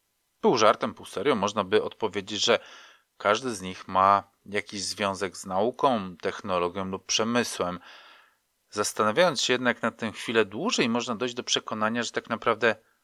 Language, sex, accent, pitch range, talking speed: Polish, male, native, 100-145 Hz, 150 wpm